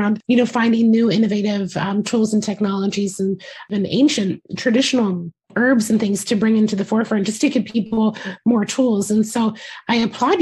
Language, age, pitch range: English, 30-49, 200-230 Hz